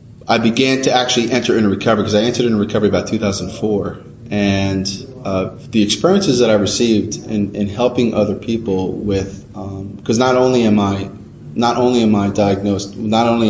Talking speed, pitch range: 180 wpm, 100-115 Hz